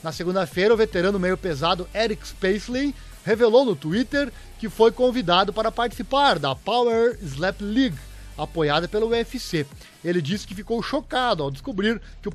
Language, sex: Portuguese, male